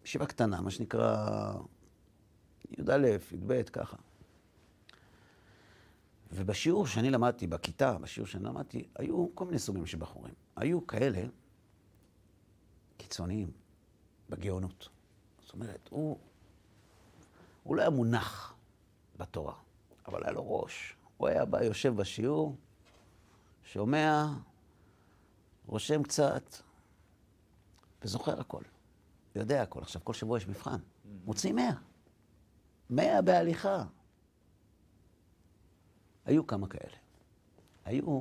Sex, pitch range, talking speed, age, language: male, 95-115 Hz, 95 wpm, 50-69, Hebrew